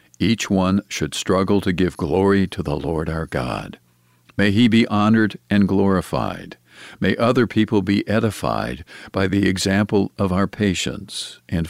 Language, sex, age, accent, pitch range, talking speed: English, male, 60-79, American, 85-105 Hz, 155 wpm